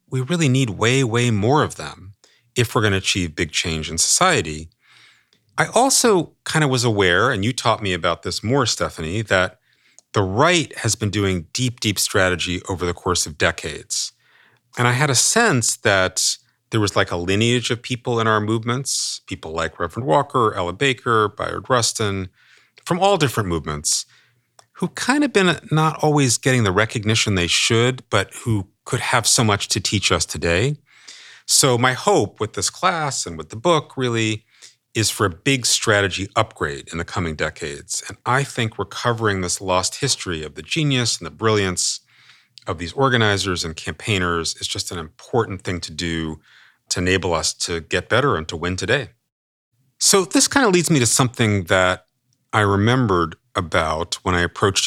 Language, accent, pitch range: English, American, 90-125 Hz